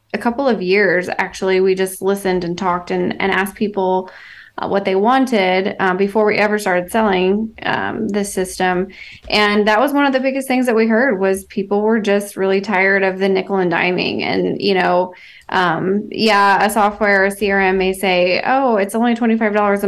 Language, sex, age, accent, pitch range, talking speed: English, female, 20-39, American, 190-225 Hz, 195 wpm